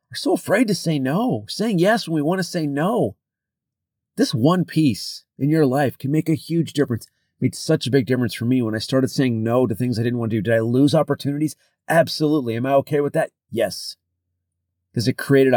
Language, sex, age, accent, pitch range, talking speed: English, male, 30-49, American, 110-150 Hz, 225 wpm